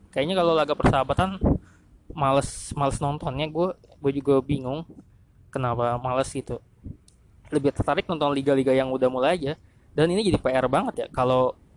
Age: 20-39